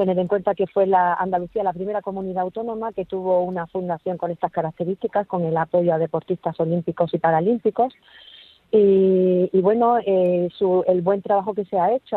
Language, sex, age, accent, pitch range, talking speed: Spanish, female, 40-59, Spanish, 170-200 Hz, 185 wpm